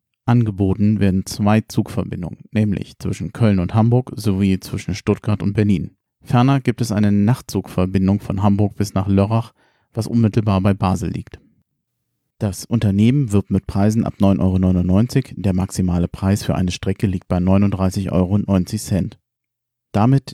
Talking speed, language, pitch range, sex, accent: 140 wpm, German, 95-115 Hz, male, German